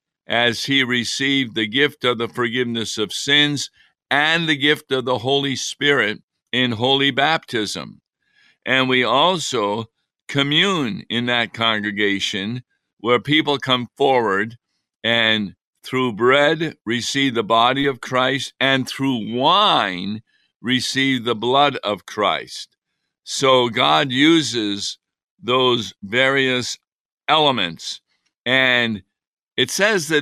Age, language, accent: 50-69, English, American